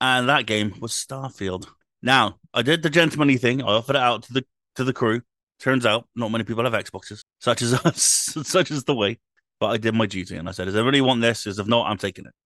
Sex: male